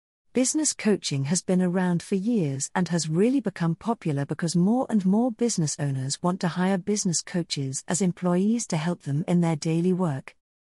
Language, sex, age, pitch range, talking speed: English, female, 40-59, 155-215 Hz, 180 wpm